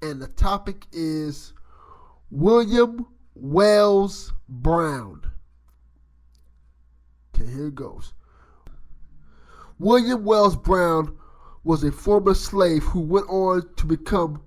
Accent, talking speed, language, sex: American, 95 wpm, English, male